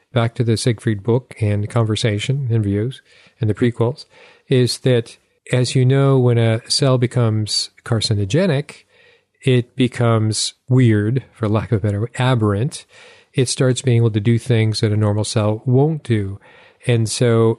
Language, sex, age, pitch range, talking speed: English, male, 40-59, 110-125 Hz, 160 wpm